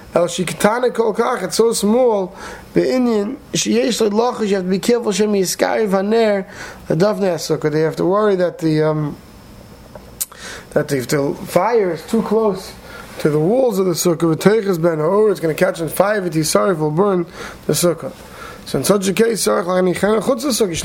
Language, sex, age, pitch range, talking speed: English, male, 30-49, 170-210 Hz, 160 wpm